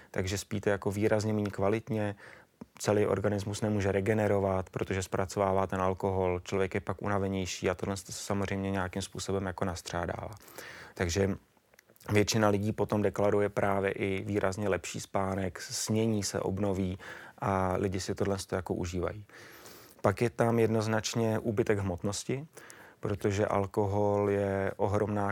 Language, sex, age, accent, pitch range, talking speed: Czech, male, 30-49, native, 95-105 Hz, 130 wpm